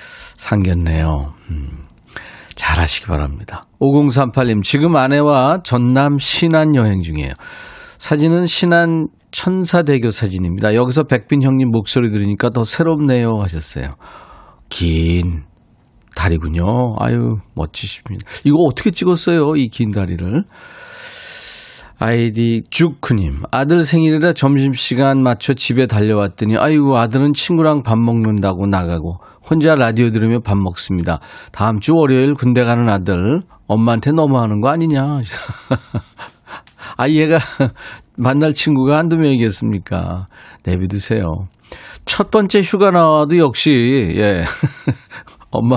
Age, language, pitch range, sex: 40-59, Korean, 95-145 Hz, male